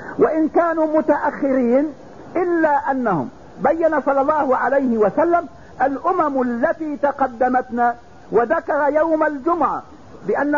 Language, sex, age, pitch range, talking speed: English, male, 50-69, 260-310 Hz, 95 wpm